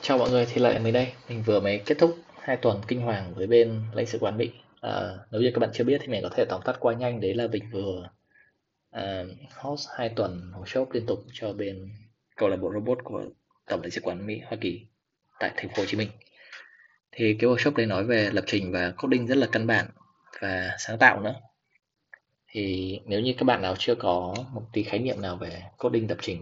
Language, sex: Vietnamese, male